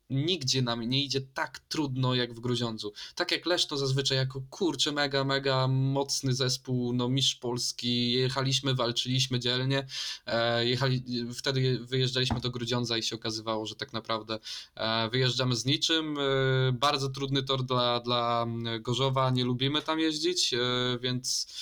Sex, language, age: male, Polish, 20-39